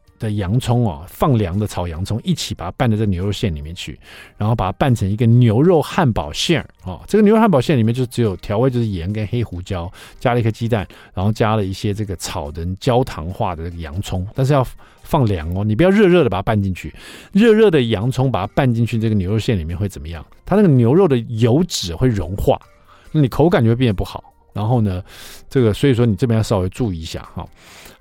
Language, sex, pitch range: Chinese, male, 95-135 Hz